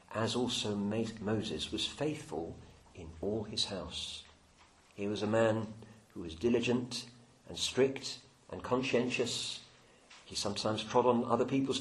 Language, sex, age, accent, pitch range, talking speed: English, male, 50-69, British, 100-120 Hz, 130 wpm